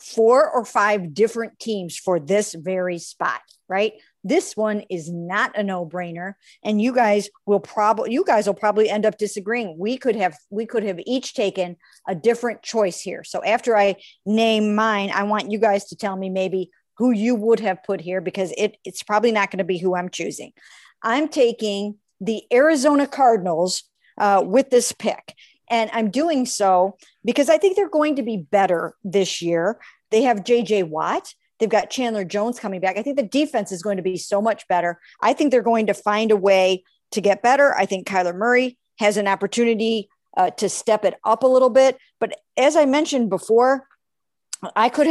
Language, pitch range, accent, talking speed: English, 190-240 Hz, American, 195 wpm